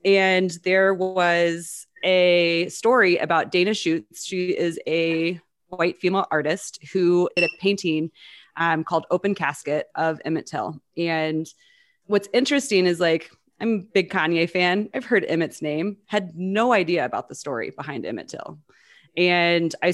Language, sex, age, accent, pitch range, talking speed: English, female, 30-49, American, 165-200 Hz, 150 wpm